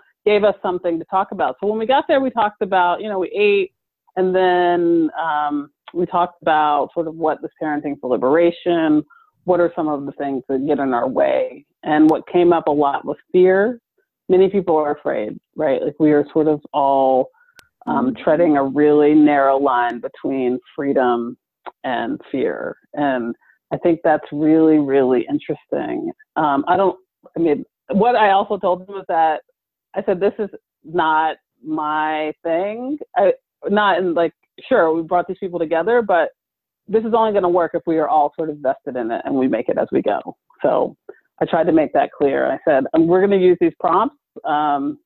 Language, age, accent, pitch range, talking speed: English, 30-49, American, 150-205 Hz, 190 wpm